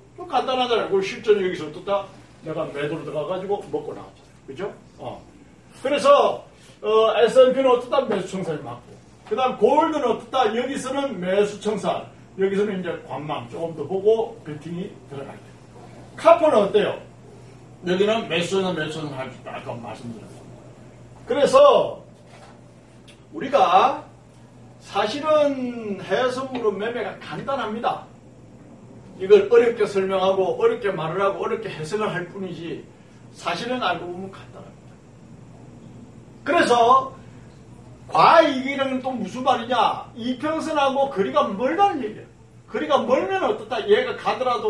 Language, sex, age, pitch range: Korean, male, 40-59, 170-260 Hz